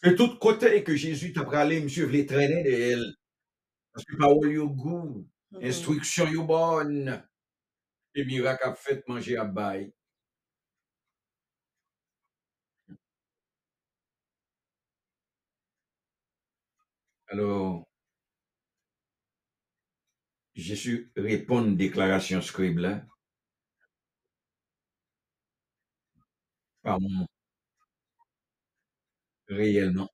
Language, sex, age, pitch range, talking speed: English, male, 60-79, 100-155 Hz, 80 wpm